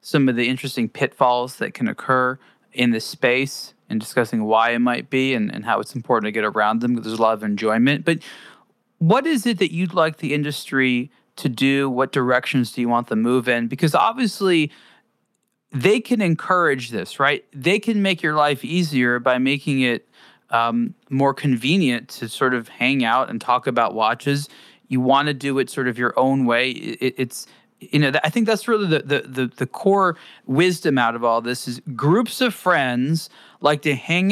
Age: 20-39